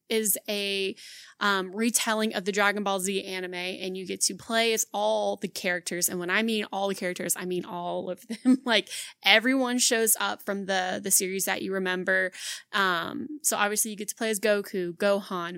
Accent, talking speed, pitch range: American, 200 wpm, 185-225 Hz